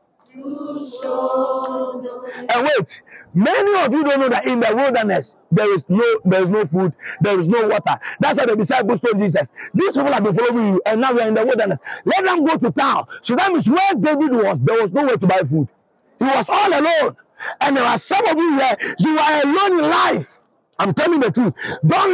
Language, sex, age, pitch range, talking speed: English, male, 50-69, 215-310 Hz, 215 wpm